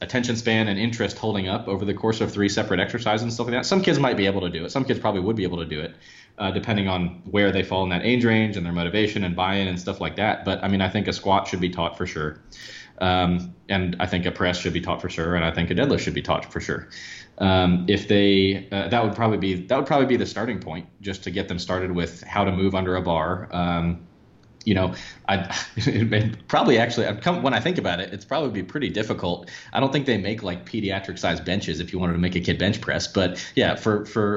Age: 20-39